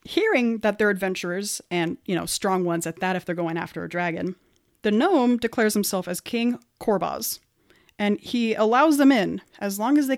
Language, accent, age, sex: English, American, 30-49, female